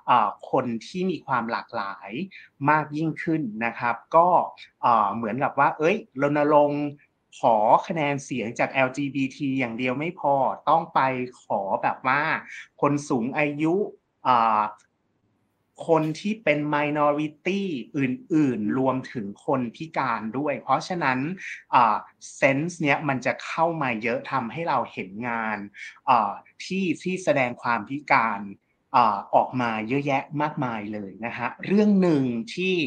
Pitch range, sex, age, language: 120-160 Hz, male, 30-49, Thai